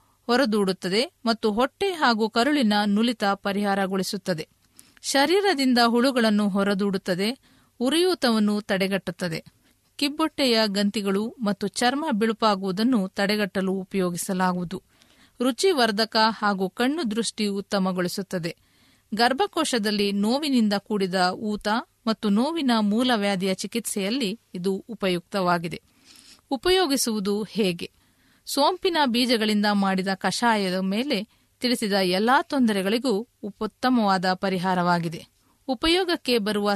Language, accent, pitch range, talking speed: Kannada, native, 195-245 Hz, 80 wpm